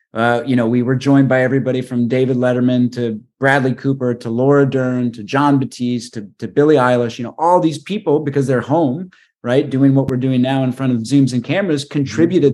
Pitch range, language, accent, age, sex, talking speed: 120-145 Hz, English, American, 30-49, male, 215 wpm